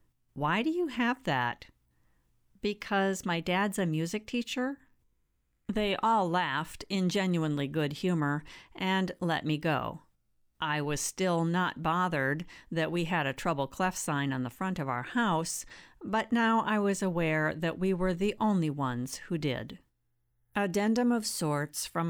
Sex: female